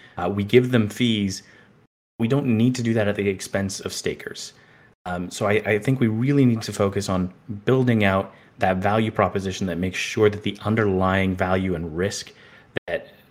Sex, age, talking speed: male, 30-49, 190 wpm